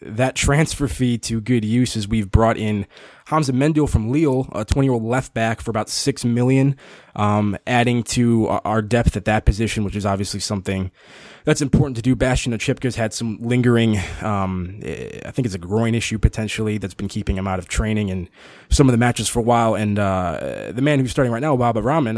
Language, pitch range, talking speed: English, 100-120 Hz, 205 wpm